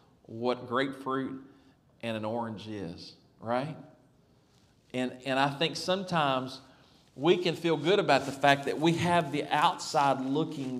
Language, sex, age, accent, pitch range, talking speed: English, male, 40-59, American, 130-170 Hz, 140 wpm